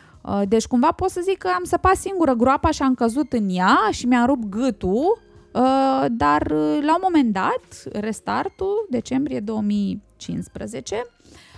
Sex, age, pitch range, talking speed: female, 20-39, 200-275 Hz, 145 wpm